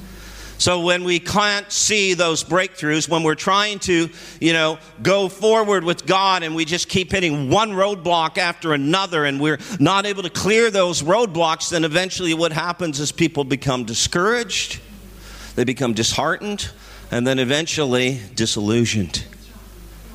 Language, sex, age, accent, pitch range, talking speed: English, male, 50-69, American, 120-180 Hz, 145 wpm